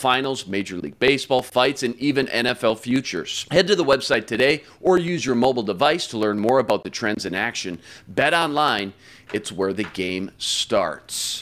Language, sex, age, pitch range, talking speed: English, male, 40-59, 115-150 Hz, 180 wpm